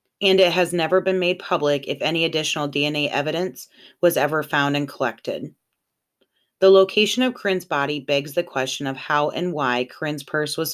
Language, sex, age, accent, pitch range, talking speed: English, female, 30-49, American, 140-170 Hz, 180 wpm